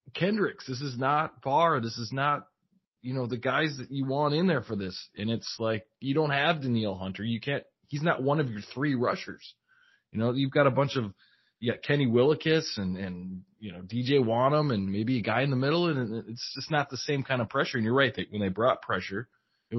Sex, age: male, 20-39